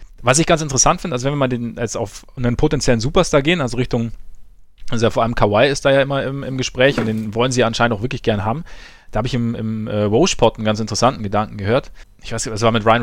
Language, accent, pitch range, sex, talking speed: German, German, 110-135 Hz, male, 265 wpm